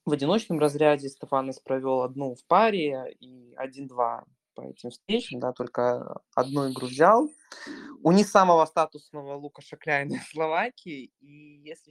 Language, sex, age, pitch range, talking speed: Russian, male, 20-39, 135-170 Hz, 140 wpm